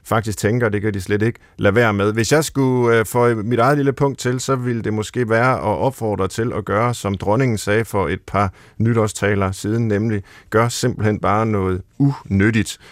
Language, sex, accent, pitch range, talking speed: Danish, male, native, 105-135 Hz, 200 wpm